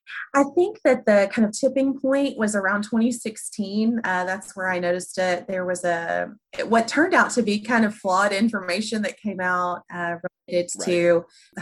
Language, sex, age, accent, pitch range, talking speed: English, female, 20-39, American, 175-210 Hz, 185 wpm